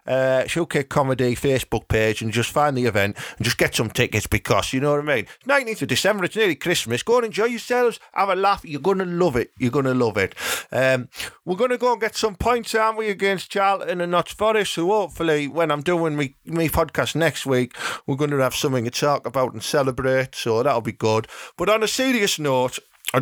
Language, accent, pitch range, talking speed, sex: English, British, 125-175 Hz, 235 wpm, male